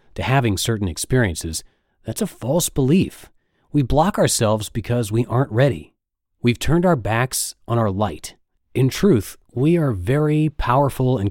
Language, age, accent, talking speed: English, 30-49, American, 155 wpm